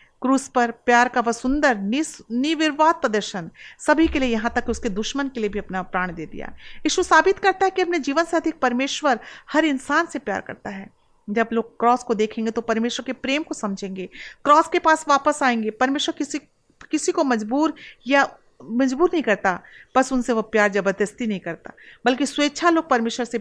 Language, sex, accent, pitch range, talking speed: Hindi, female, native, 220-295 Hz, 190 wpm